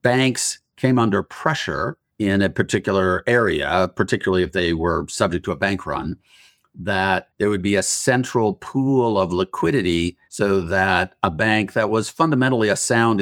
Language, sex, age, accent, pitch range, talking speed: English, male, 50-69, American, 90-105 Hz, 160 wpm